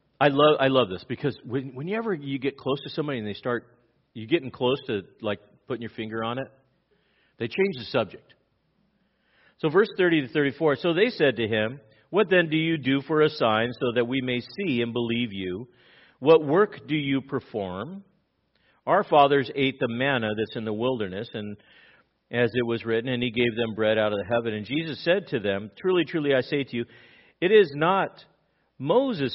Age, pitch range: 50-69, 115-160 Hz